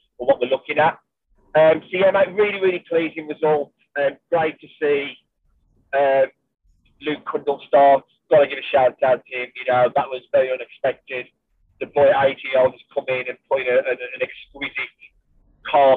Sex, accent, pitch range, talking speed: male, British, 135-175 Hz, 190 wpm